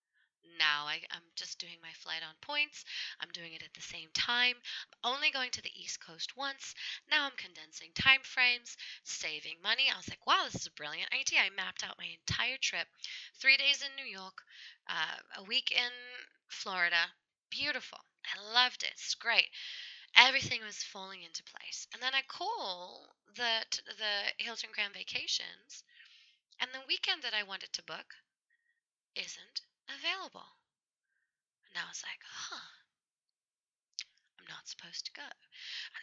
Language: English